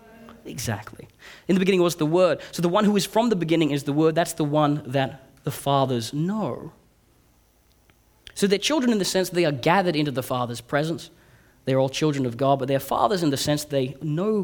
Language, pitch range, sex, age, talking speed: English, 120-155 Hz, male, 30-49, 210 wpm